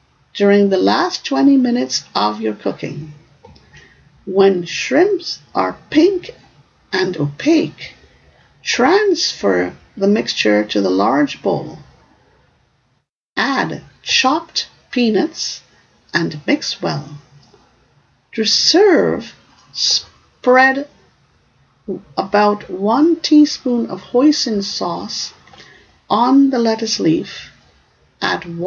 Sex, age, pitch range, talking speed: female, 50-69, 170-280 Hz, 85 wpm